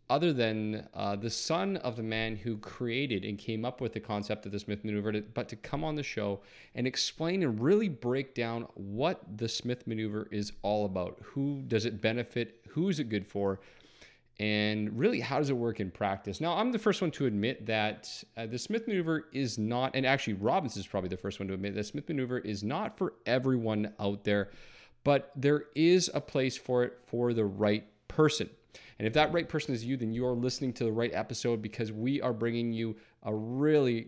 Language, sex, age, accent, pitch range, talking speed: English, male, 30-49, American, 105-130 Hz, 215 wpm